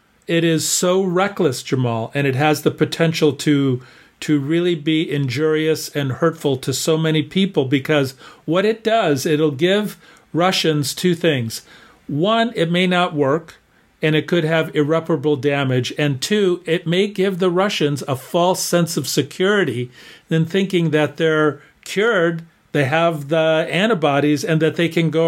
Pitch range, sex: 150-175 Hz, male